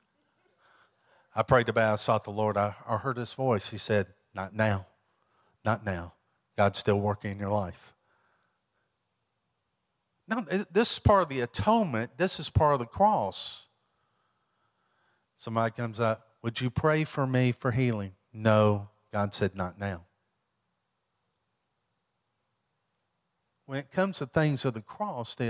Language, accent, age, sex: English, American, 50-69, male